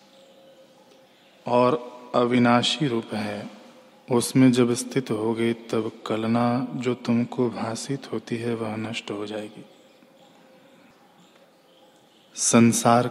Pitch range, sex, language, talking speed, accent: 115-135 Hz, male, Hindi, 90 wpm, native